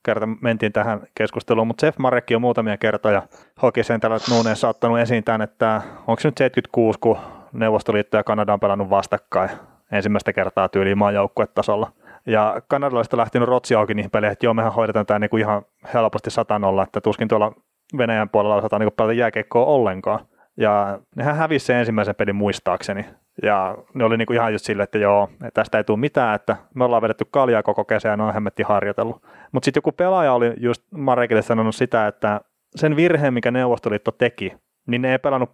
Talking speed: 180 wpm